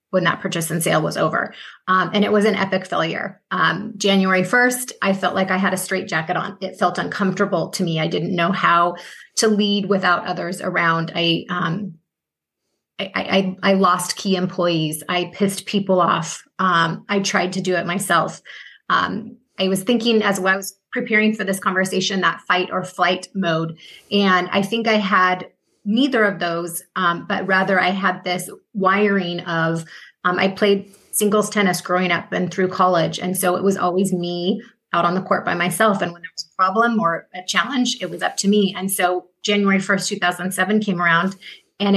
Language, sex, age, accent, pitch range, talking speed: English, female, 30-49, American, 180-200 Hz, 195 wpm